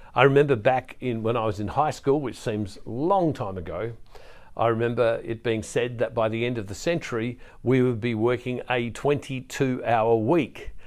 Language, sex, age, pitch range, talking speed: English, male, 50-69, 100-125 Hz, 195 wpm